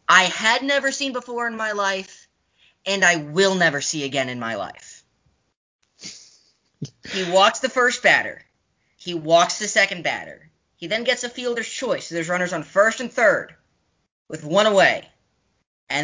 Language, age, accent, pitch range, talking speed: English, 10-29, American, 165-235 Hz, 165 wpm